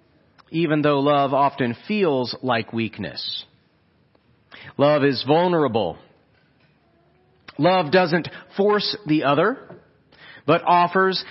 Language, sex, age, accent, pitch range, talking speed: English, male, 40-59, American, 130-165 Hz, 90 wpm